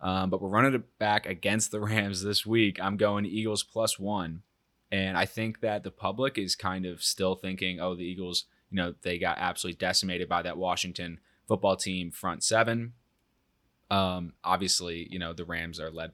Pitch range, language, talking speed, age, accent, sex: 85-105 Hz, English, 190 wpm, 20-39, American, male